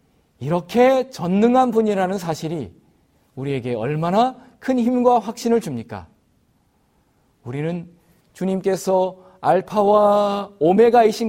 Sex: male